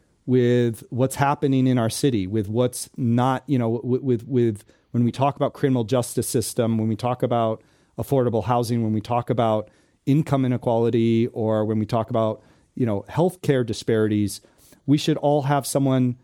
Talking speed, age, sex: 175 wpm, 40-59, male